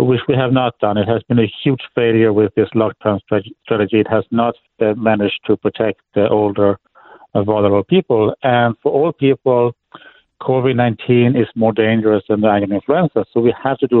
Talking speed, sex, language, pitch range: 185 wpm, male, English, 105-125 Hz